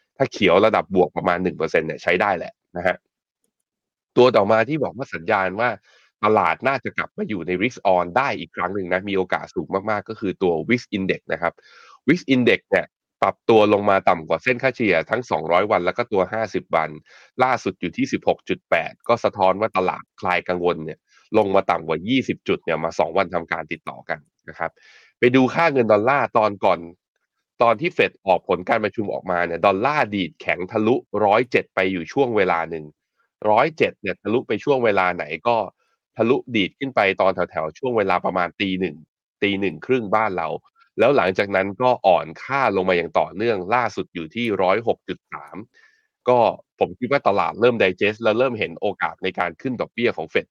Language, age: Thai, 20-39